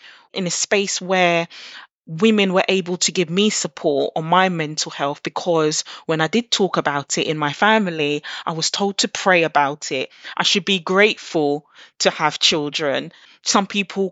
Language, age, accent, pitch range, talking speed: English, 20-39, British, 160-200 Hz, 175 wpm